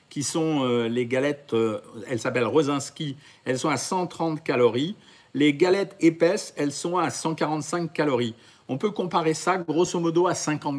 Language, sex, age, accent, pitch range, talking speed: French, male, 50-69, French, 145-180 Hz, 155 wpm